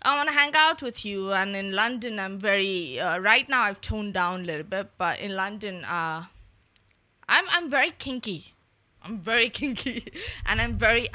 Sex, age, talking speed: female, 20-39, 190 wpm